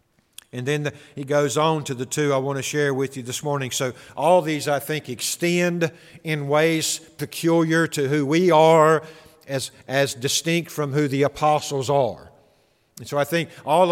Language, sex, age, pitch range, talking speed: English, male, 50-69, 140-160 Hz, 185 wpm